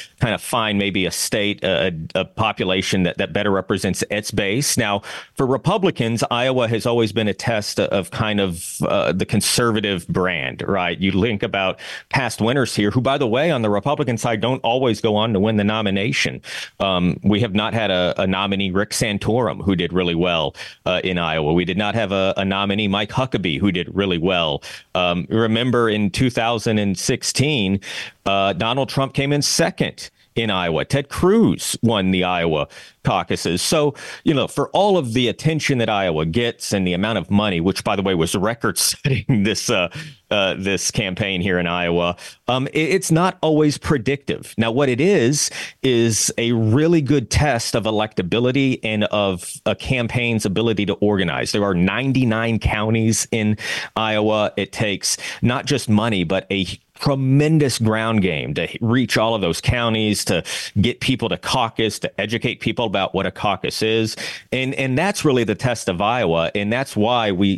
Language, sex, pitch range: English, male, 100-125 Hz